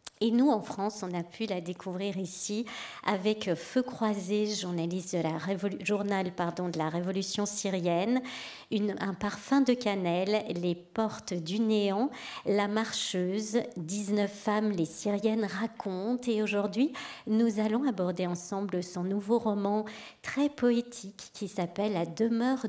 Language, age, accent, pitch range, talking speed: French, 40-59, French, 180-225 Hz, 130 wpm